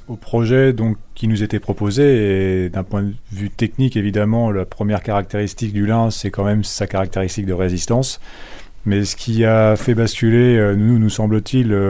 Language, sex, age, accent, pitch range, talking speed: French, male, 30-49, French, 100-115 Hz, 175 wpm